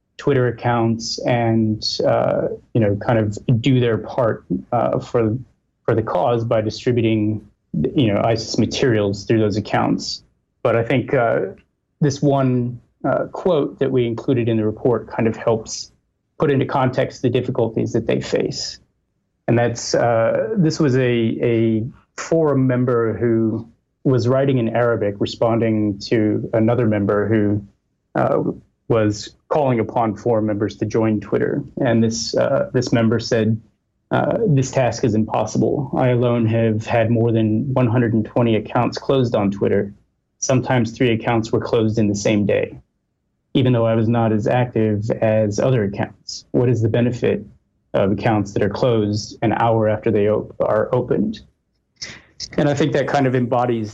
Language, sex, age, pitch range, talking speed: English, male, 30-49, 110-125 Hz, 155 wpm